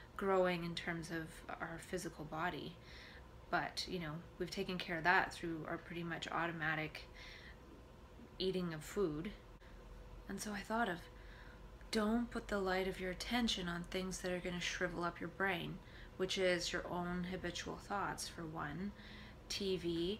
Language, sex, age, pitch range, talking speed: English, female, 20-39, 165-185 Hz, 160 wpm